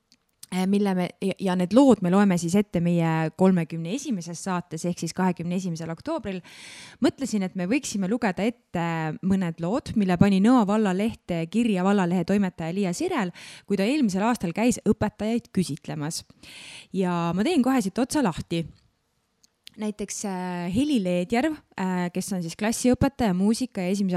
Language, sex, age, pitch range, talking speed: English, female, 20-39, 170-215 Hz, 145 wpm